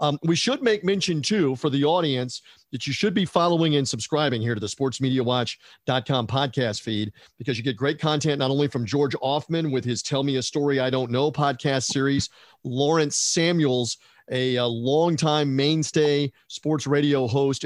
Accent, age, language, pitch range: American, 50-69, English, 125-150 Hz